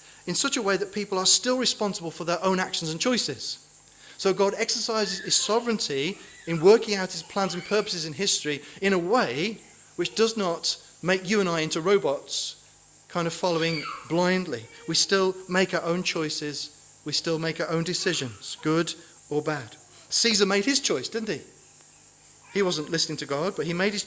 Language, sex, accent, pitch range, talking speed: English, male, British, 160-210 Hz, 185 wpm